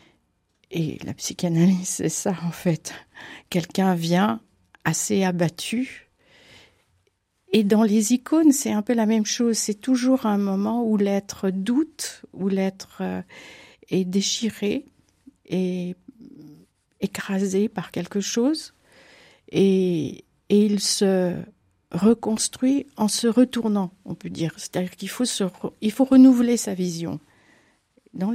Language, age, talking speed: French, 60-79, 125 wpm